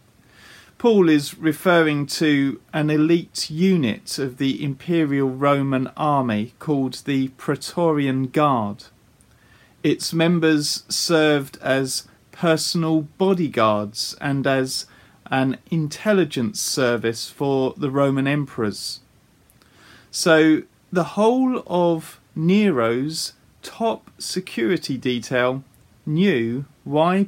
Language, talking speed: English, 90 wpm